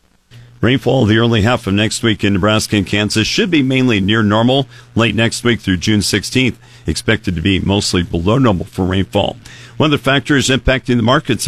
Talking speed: 195 wpm